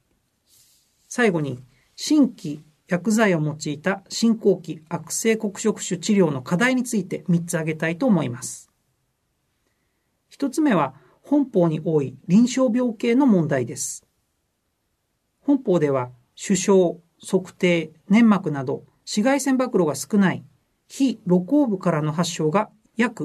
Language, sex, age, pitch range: Japanese, male, 40-59, 160-225 Hz